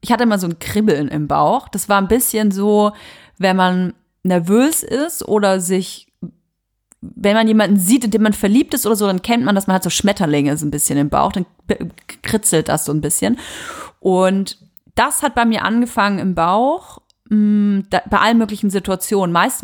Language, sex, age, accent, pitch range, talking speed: German, female, 30-49, German, 185-230 Hz, 195 wpm